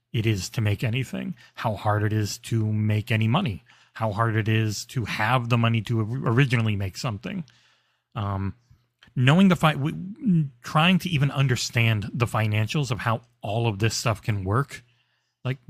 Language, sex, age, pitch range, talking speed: English, male, 30-49, 110-135 Hz, 170 wpm